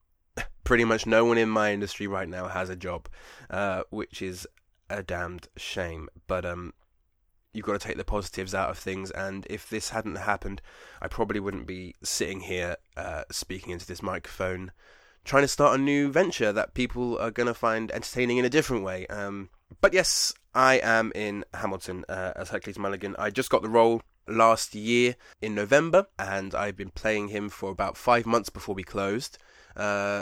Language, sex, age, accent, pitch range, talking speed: English, male, 20-39, British, 95-115 Hz, 190 wpm